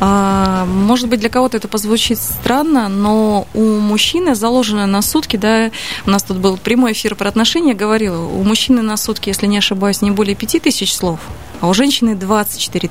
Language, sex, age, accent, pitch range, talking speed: Russian, female, 20-39, native, 200-245 Hz, 180 wpm